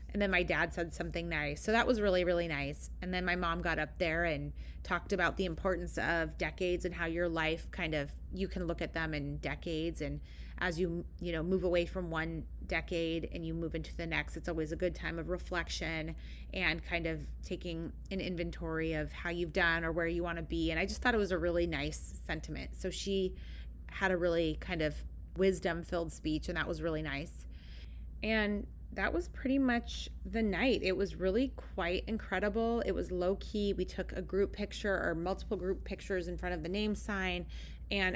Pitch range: 160-190 Hz